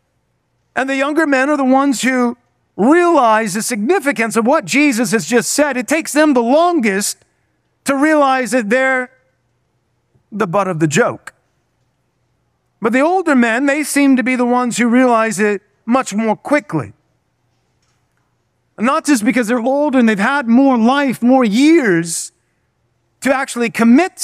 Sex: male